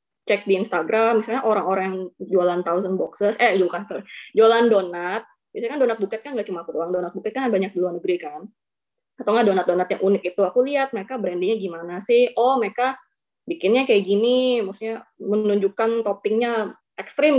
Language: Indonesian